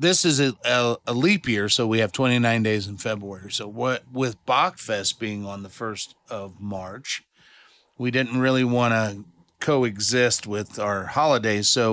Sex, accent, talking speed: male, American, 175 wpm